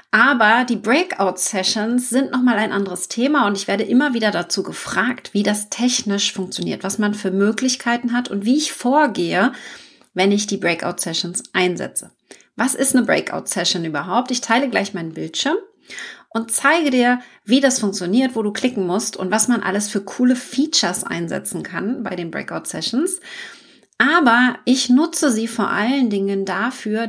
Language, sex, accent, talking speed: German, female, German, 160 wpm